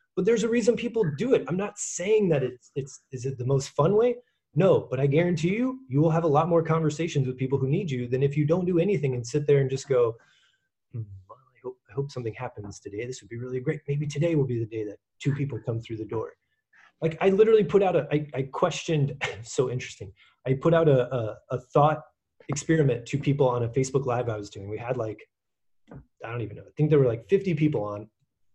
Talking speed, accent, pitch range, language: 245 wpm, American, 125-165 Hz, English